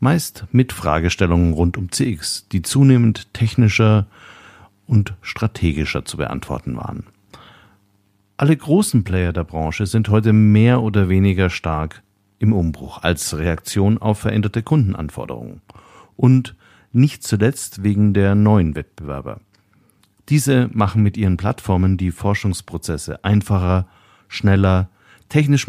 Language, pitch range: German, 90-110 Hz